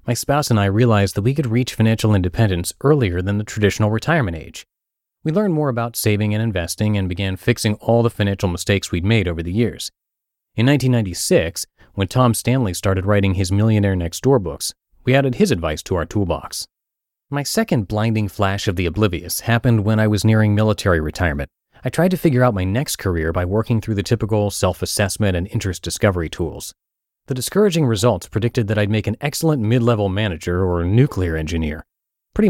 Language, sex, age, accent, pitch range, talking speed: English, male, 30-49, American, 95-125 Hz, 190 wpm